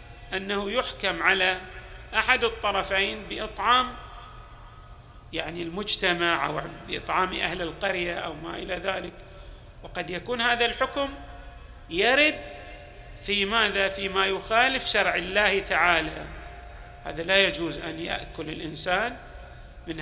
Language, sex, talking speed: Arabic, male, 105 wpm